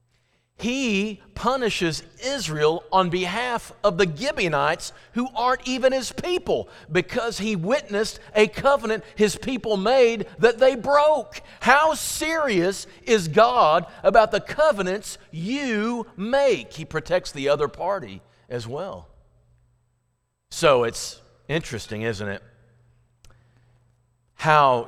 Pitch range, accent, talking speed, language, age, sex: 125-200 Hz, American, 110 wpm, English, 50-69, male